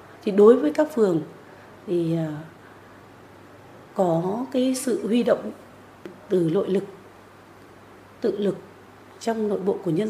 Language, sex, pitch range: Vietnamese, female, 180-235 Hz